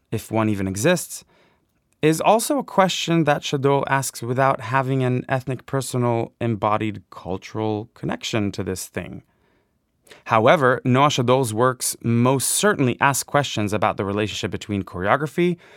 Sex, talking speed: male, 135 wpm